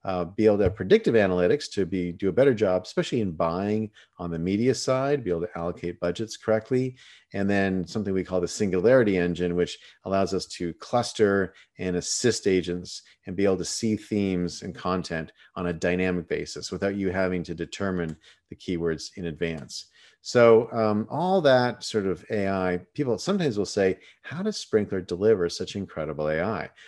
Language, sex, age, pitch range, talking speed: English, male, 40-59, 90-105 Hz, 180 wpm